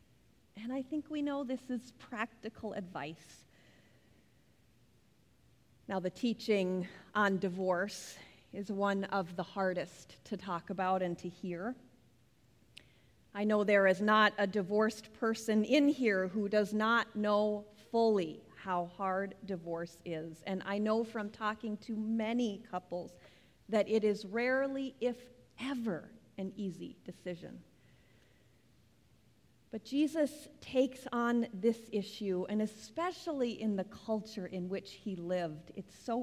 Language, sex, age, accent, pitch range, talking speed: English, female, 40-59, American, 190-240 Hz, 130 wpm